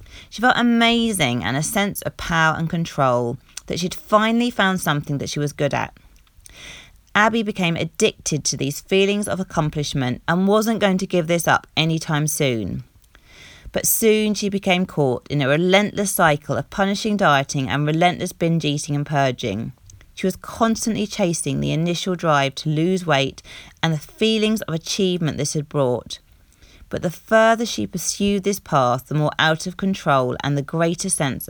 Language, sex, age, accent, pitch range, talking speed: English, female, 30-49, British, 140-195 Hz, 170 wpm